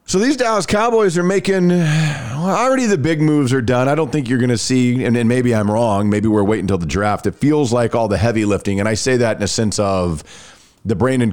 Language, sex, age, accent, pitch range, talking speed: English, male, 40-59, American, 100-130 Hz, 255 wpm